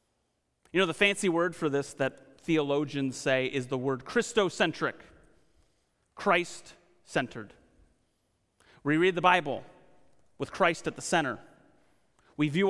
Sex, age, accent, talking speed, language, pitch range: male, 30-49, American, 125 wpm, English, 130-180 Hz